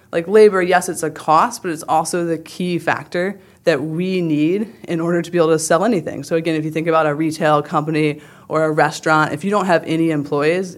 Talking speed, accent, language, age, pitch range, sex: 230 wpm, American, English, 20-39, 150-175 Hz, female